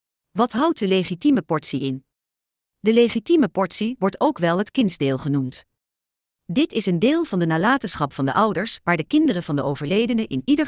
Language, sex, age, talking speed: English, female, 40-59, 185 wpm